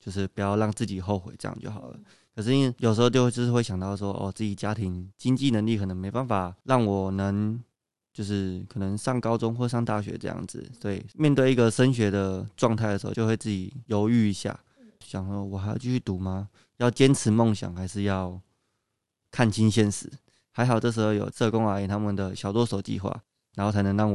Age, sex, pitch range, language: 20-39, male, 100-120 Hz, Chinese